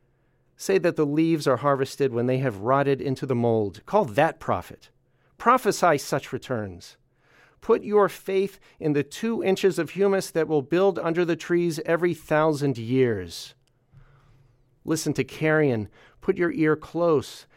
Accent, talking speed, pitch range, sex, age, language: American, 150 wpm, 130-170 Hz, male, 40-59, English